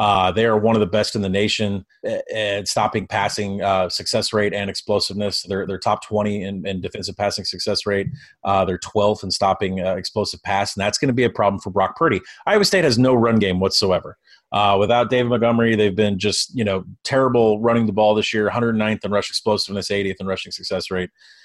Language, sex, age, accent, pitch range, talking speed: English, male, 30-49, American, 100-125 Hz, 215 wpm